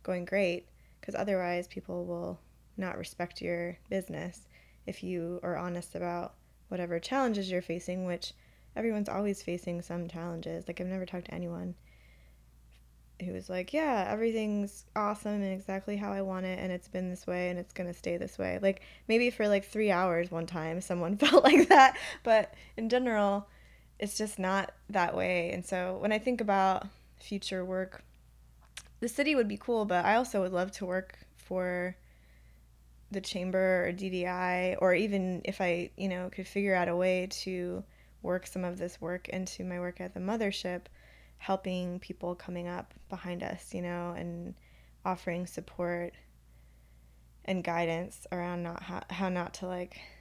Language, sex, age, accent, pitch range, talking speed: English, female, 10-29, American, 165-190 Hz, 170 wpm